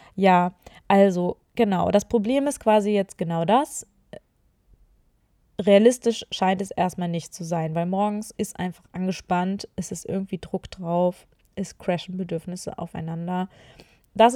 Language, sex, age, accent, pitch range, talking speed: German, female, 20-39, German, 180-215 Hz, 140 wpm